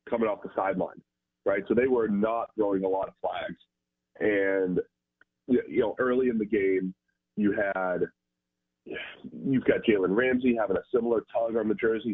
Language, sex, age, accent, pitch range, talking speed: English, male, 30-49, American, 85-125 Hz, 170 wpm